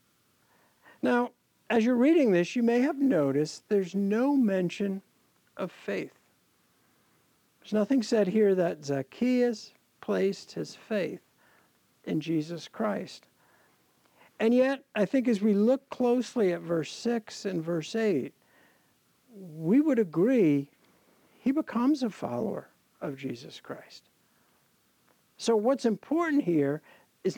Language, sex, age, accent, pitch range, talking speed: English, male, 60-79, American, 175-240 Hz, 120 wpm